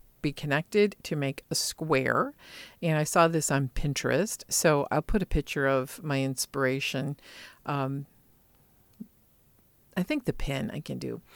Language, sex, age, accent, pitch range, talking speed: English, female, 50-69, American, 140-180 Hz, 150 wpm